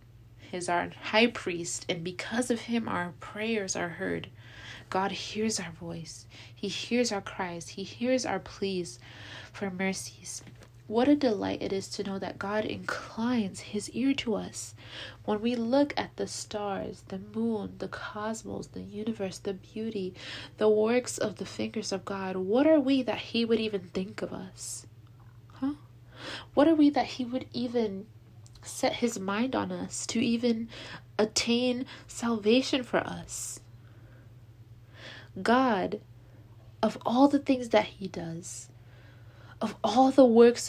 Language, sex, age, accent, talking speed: English, female, 20-39, American, 150 wpm